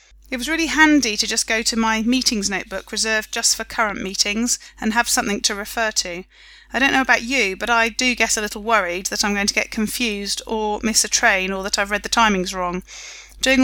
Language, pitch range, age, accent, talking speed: English, 205-255 Hz, 30-49, British, 230 wpm